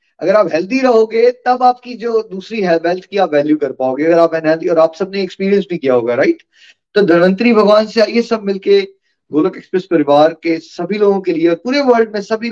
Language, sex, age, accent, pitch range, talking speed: Hindi, male, 20-39, native, 150-215 Hz, 215 wpm